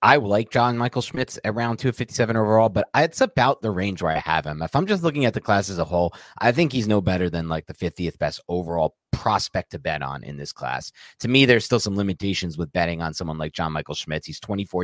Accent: American